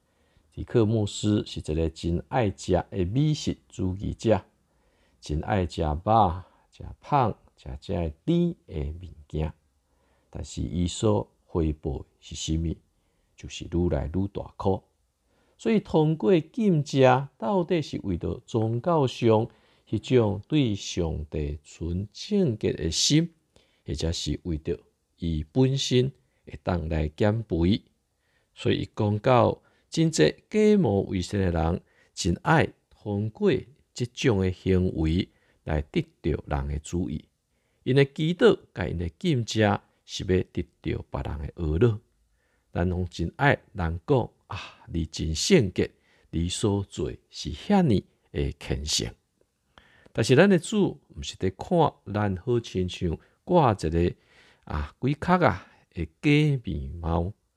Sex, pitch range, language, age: male, 80-125 Hz, Chinese, 50-69